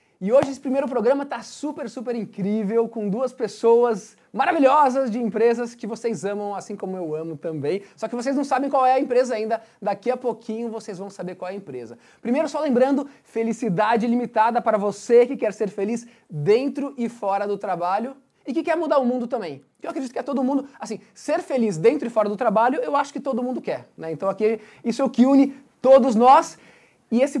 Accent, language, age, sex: Brazilian, Portuguese, 20-39, male